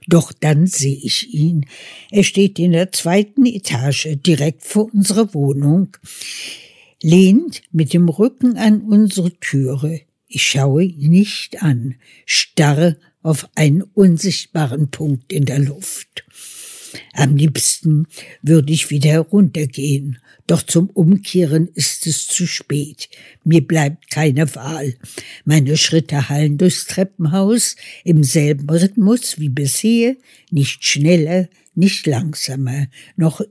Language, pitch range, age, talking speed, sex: German, 145-185 Hz, 60-79, 120 wpm, female